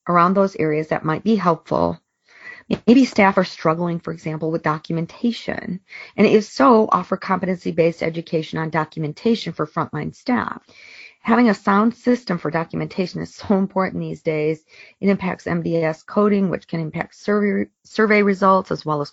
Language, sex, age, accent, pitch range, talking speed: English, female, 40-59, American, 165-210 Hz, 155 wpm